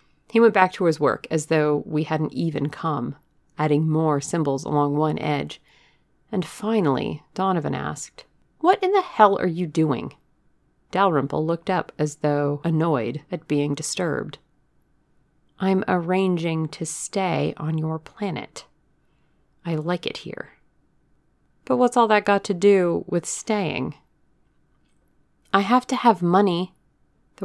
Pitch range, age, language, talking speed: 155-200 Hz, 40-59, English, 140 wpm